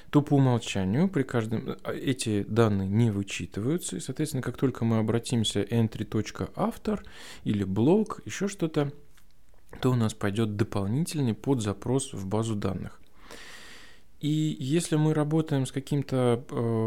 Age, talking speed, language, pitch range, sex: 20-39, 130 wpm, Russian, 105-140 Hz, male